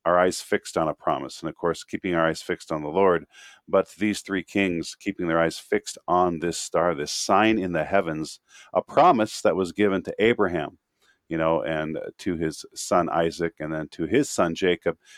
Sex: male